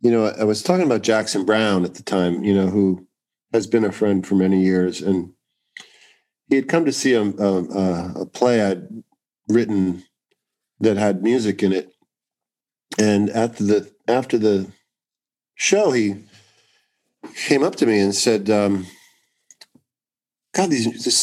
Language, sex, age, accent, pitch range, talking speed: English, male, 50-69, American, 100-140 Hz, 155 wpm